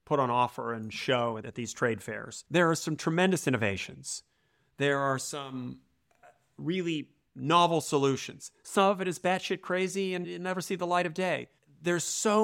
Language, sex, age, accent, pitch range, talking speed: English, male, 40-59, American, 130-160 Hz, 175 wpm